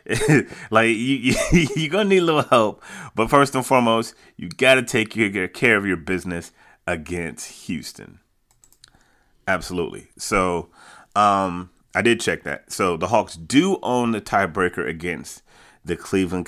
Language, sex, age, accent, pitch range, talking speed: English, male, 30-49, American, 90-115 Hz, 150 wpm